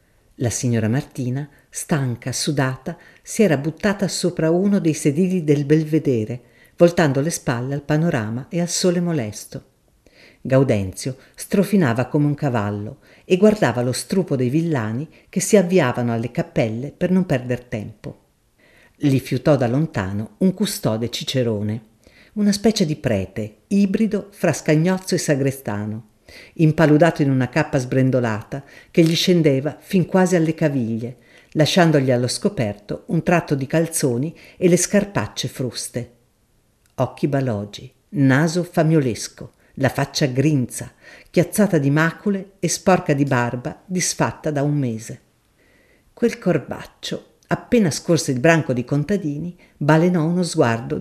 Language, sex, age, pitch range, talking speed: Italian, female, 50-69, 125-175 Hz, 130 wpm